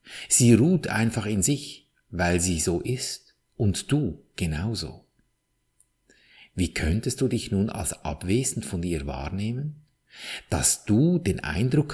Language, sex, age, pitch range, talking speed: German, male, 50-69, 95-125 Hz, 130 wpm